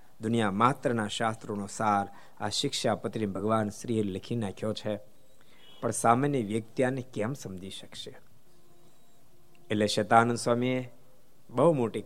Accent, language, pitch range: native, Gujarati, 110-165 Hz